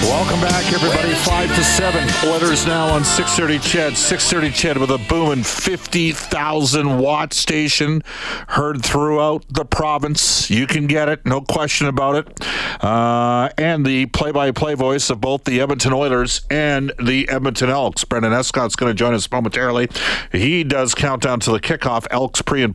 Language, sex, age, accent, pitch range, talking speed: English, male, 50-69, American, 120-150 Hz, 170 wpm